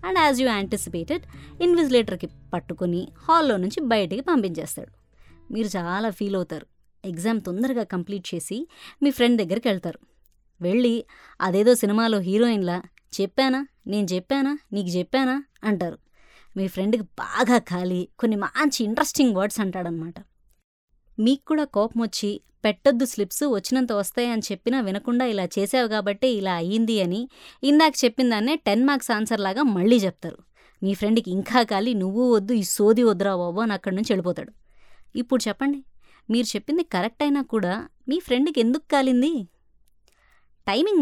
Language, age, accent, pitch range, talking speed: Telugu, 20-39, native, 190-255 Hz, 130 wpm